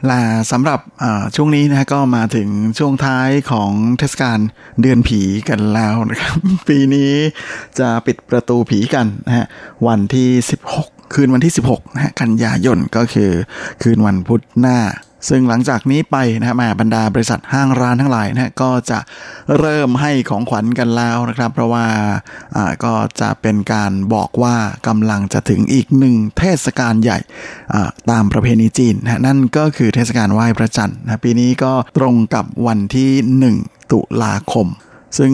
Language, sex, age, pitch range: Thai, male, 20-39, 110-130 Hz